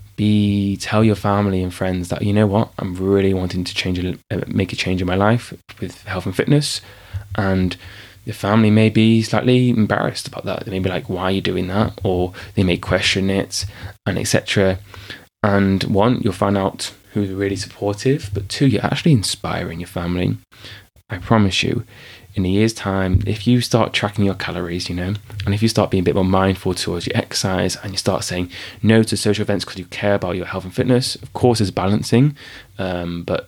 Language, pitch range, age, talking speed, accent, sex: English, 95-110 Hz, 20-39, 205 wpm, British, male